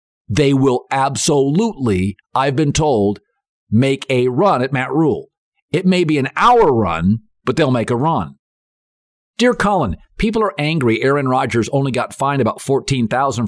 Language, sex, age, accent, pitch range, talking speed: English, male, 50-69, American, 115-165 Hz, 155 wpm